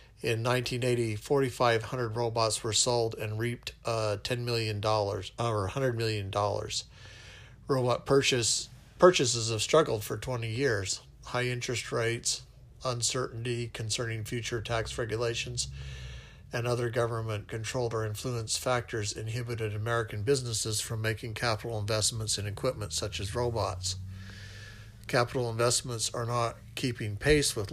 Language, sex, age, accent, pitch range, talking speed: English, male, 50-69, American, 105-125 Hz, 120 wpm